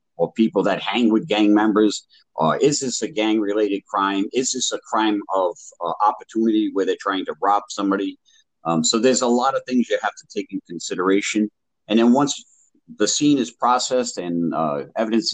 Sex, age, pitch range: male, 50-69, 100-115 Hz